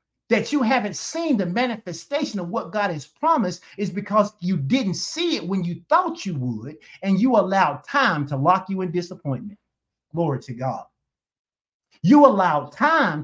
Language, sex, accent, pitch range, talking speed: English, male, American, 170-240 Hz, 170 wpm